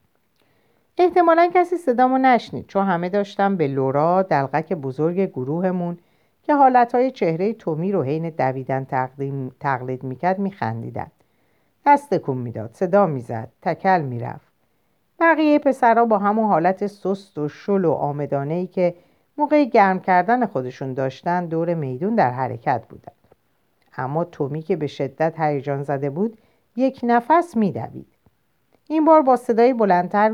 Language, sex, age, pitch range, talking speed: Persian, female, 50-69, 145-235 Hz, 130 wpm